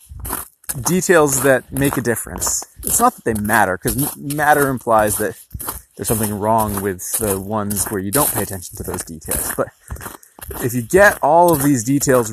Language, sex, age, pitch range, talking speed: English, male, 30-49, 105-140 Hz, 175 wpm